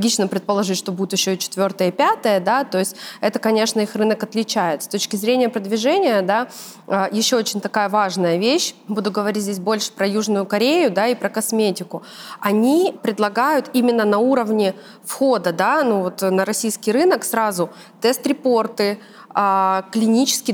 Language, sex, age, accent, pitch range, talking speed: Russian, female, 20-39, native, 190-225 Hz, 150 wpm